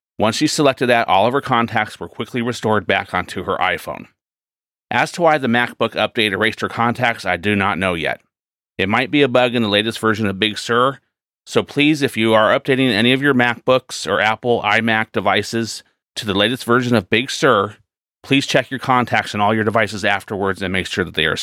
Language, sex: English, male